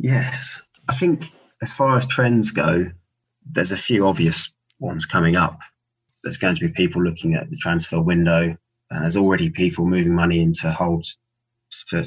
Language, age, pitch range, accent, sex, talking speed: English, 20-39, 90-120 Hz, British, male, 170 wpm